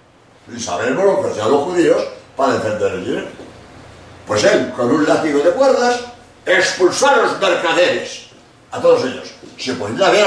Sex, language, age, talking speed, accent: male, Spanish, 60-79, 170 wpm, Spanish